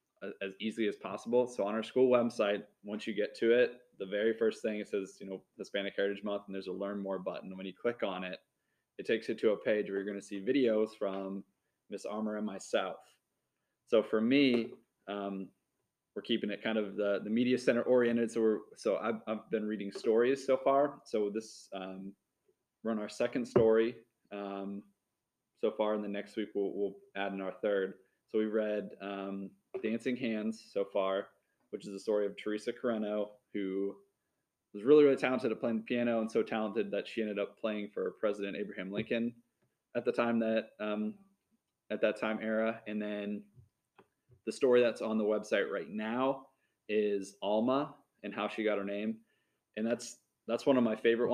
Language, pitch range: English, 100-115 Hz